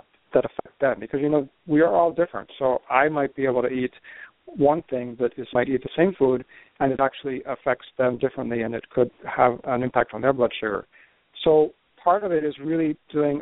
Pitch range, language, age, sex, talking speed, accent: 125-145 Hz, English, 50-69, male, 220 wpm, American